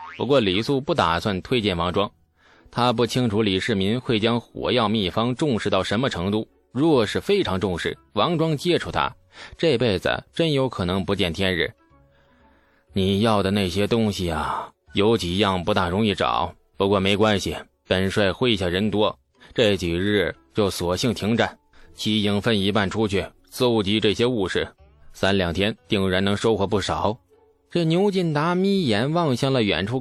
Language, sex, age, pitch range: Chinese, male, 20-39, 95-130 Hz